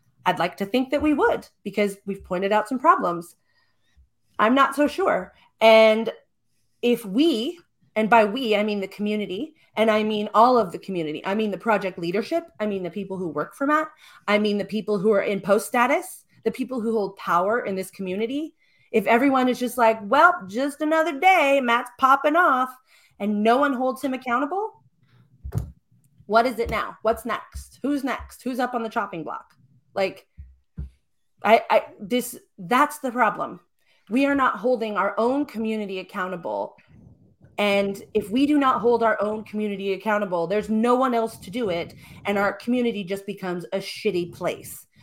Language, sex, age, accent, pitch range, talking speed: English, female, 30-49, American, 200-260 Hz, 180 wpm